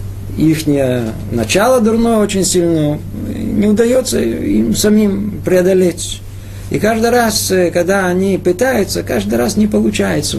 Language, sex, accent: Russian, male, native